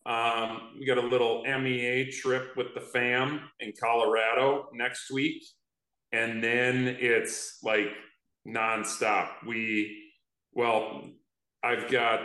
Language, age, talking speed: English, 40-59, 115 wpm